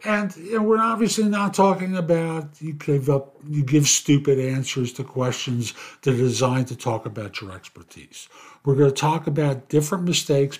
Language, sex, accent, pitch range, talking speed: English, male, American, 115-160 Hz, 180 wpm